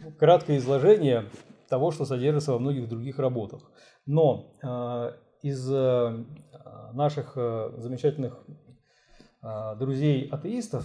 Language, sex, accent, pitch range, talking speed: Russian, male, native, 115-145 Hz, 75 wpm